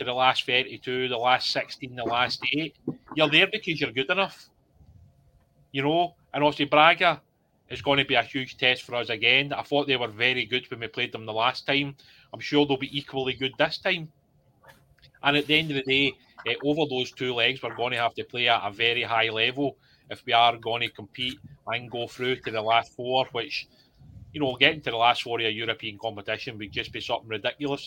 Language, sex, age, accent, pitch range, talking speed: English, male, 30-49, British, 115-140 Hz, 225 wpm